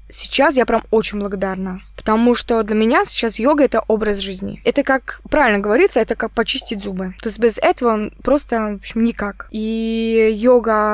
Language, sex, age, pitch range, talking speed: Russian, female, 20-39, 210-250 Hz, 165 wpm